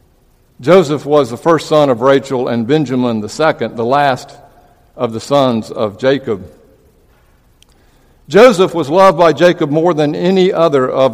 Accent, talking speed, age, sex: American, 145 wpm, 60-79, male